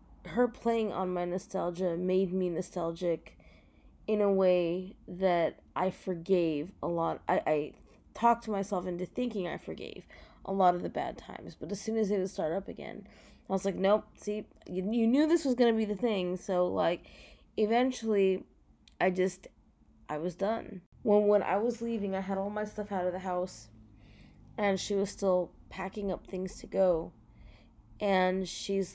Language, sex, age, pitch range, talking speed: English, female, 20-39, 180-205 Hz, 180 wpm